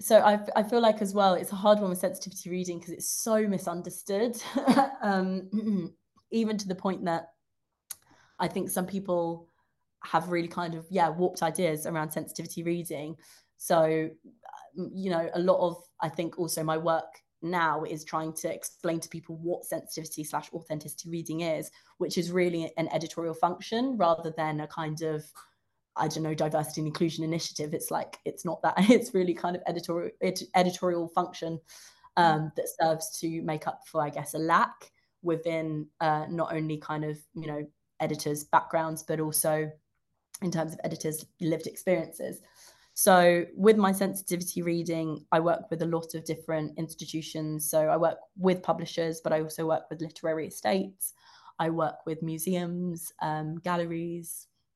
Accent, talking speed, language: British, 165 wpm, English